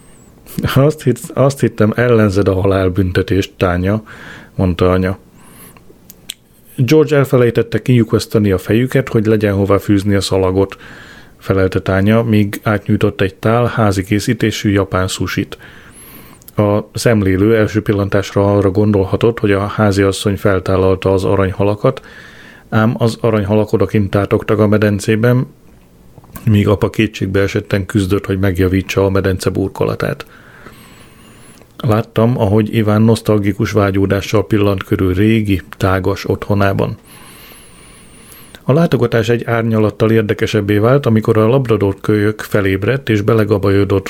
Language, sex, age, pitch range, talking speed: Hungarian, male, 30-49, 100-115 Hz, 115 wpm